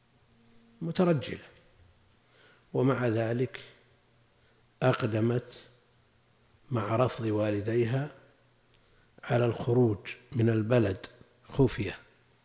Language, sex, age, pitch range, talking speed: Arabic, male, 50-69, 110-130 Hz, 60 wpm